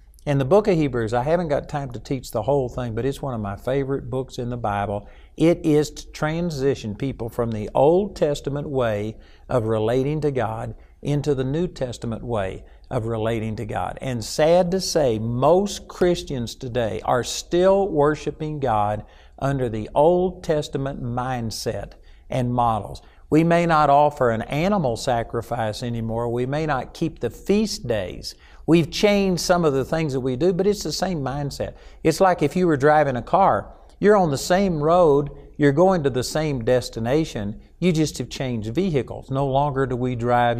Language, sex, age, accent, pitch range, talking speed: English, male, 60-79, American, 120-160 Hz, 180 wpm